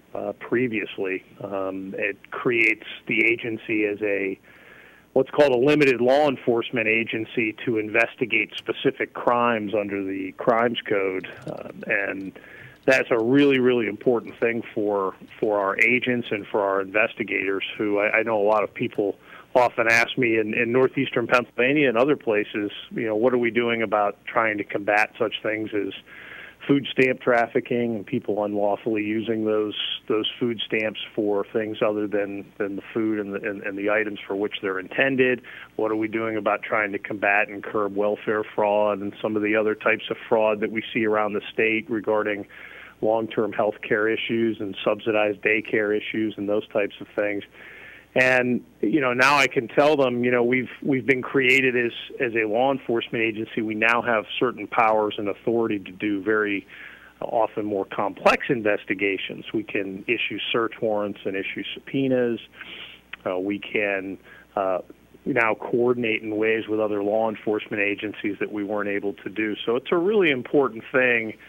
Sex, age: male, 40-59